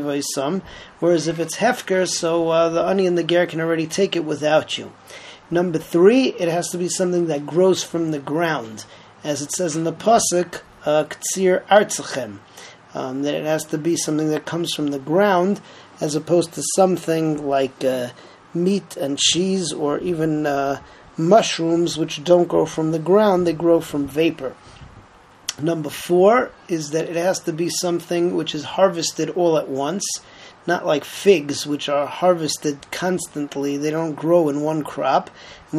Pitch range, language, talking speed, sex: 150-175 Hz, English, 170 wpm, male